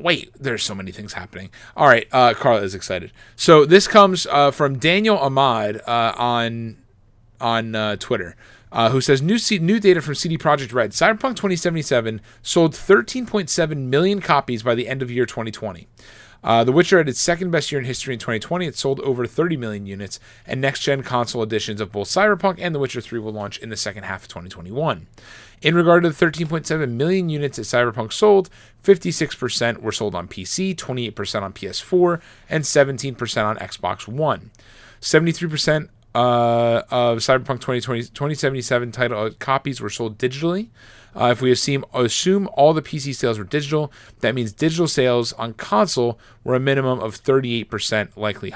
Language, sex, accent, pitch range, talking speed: English, male, American, 110-150 Hz, 175 wpm